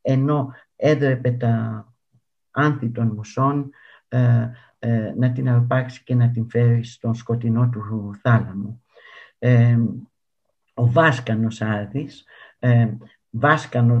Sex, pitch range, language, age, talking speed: male, 115-135 Hz, Greek, 60-79, 105 wpm